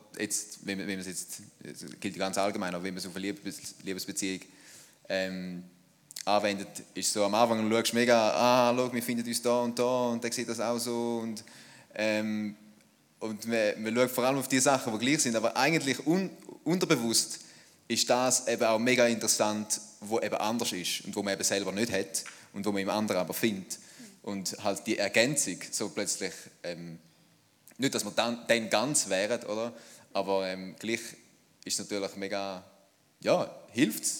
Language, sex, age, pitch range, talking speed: German, male, 20-39, 95-120 Hz, 190 wpm